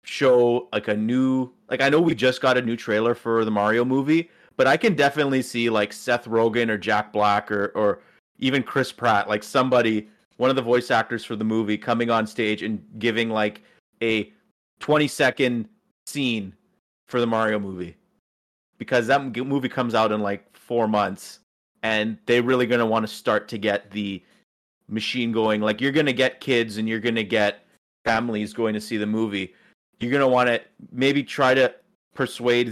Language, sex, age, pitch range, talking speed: English, male, 30-49, 105-125 Hz, 195 wpm